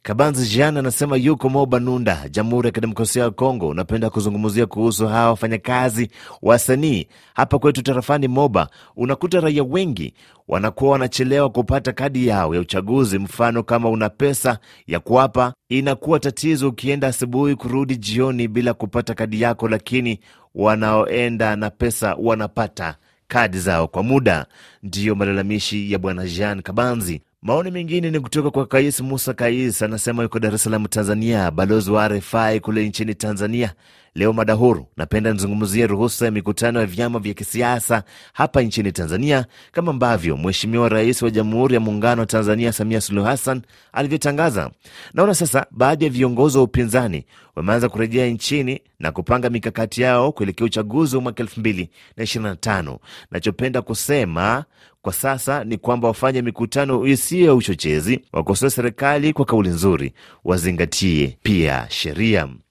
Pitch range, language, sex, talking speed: 105-130 Hz, Swahili, male, 140 wpm